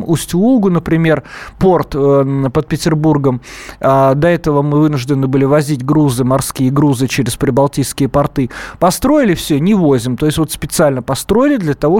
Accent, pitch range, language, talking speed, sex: native, 135-170 Hz, Russian, 140 wpm, male